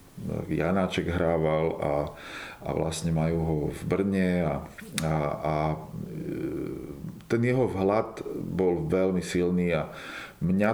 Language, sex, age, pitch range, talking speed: Slovak, male, 40-59, 85-95 Hz, 110 wpm